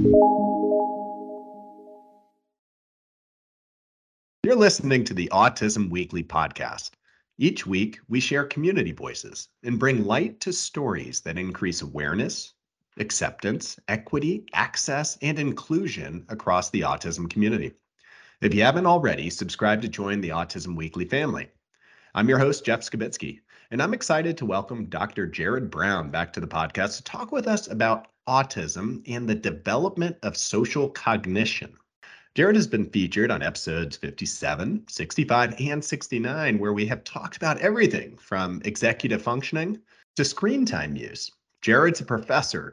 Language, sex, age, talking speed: English, male, 40-59, 135 wpm